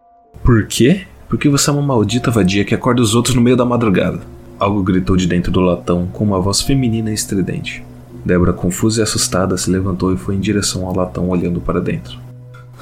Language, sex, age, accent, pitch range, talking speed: Portuguese, male, 20-39, Brazilian, 95-120 Hz, 200 wpm